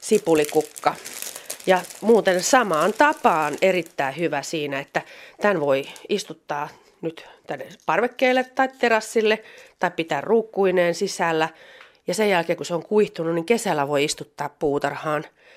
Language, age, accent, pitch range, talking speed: Finnish, 30-49, native, 155-215 Hz, 125 wpm